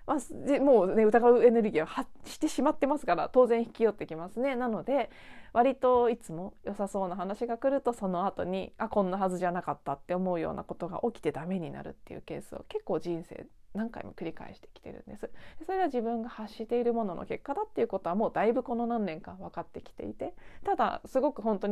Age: 20-39